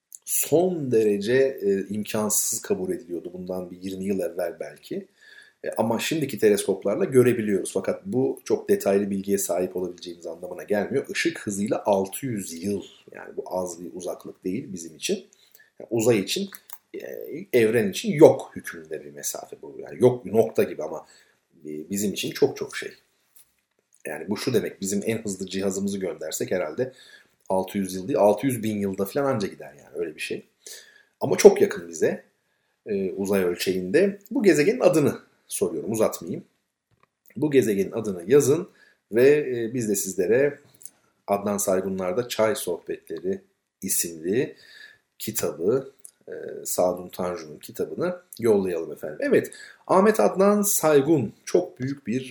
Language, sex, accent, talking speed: Turkish, male, native, 135 wpm